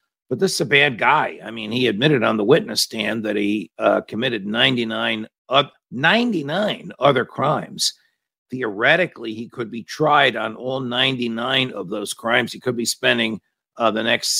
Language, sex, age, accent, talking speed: English, male, 50-69, American, 170 wpm